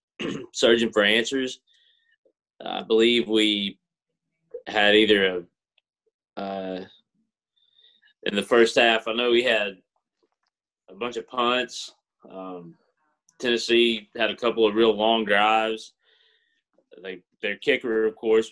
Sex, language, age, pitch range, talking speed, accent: male, English, 30-49, 100-125 Hz, 115 wpm, American